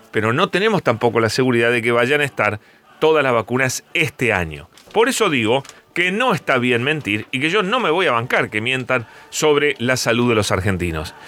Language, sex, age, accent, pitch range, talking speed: Spanish, male, 40-59, Argentinian, 120-155 Hz, 215 wpm